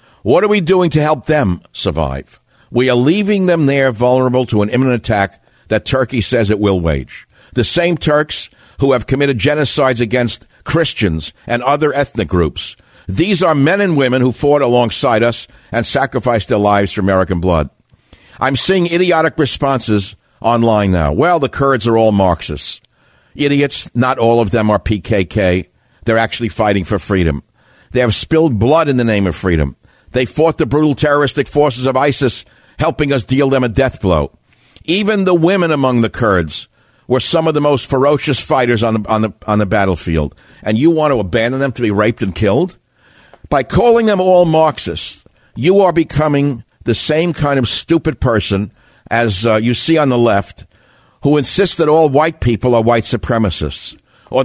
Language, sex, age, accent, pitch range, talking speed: English, male, 60-79, American, 105-145 Hz, 180 wpm